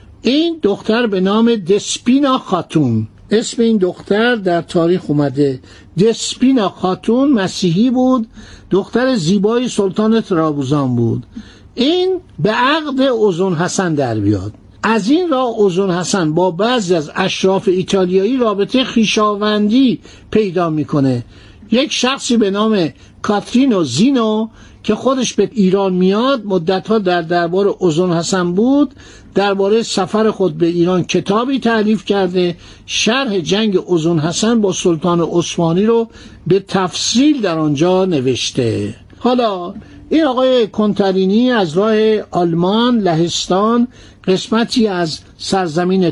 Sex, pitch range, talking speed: male, 175-225 Hz, 120 wpm